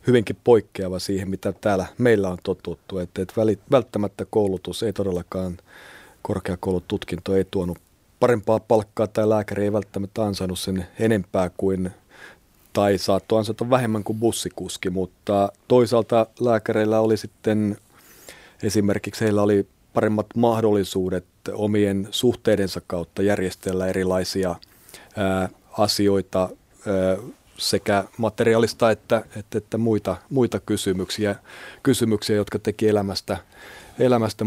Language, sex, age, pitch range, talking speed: Finnish, male, 30-49, 95-115 Hz, 105 wpm